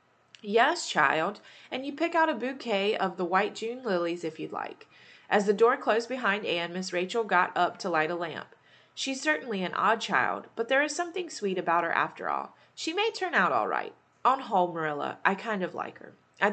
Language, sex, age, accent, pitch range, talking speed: English, female, 20-39, American, 175-235 Hz, 215 wpm